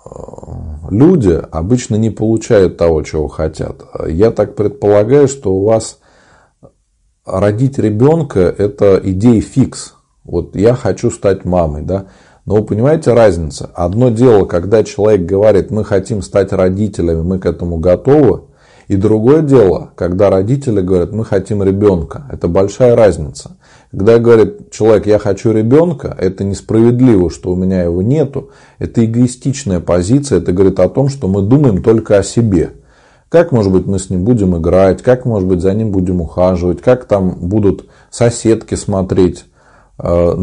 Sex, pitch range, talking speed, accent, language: male, 90-115 Hz, 145 wpm, native, Russian